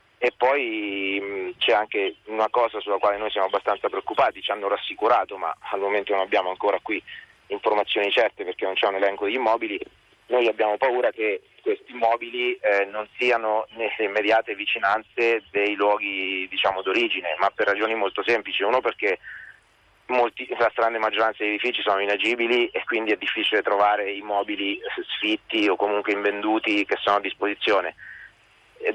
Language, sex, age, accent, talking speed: Italian, male, 30-49, native, 160 wpm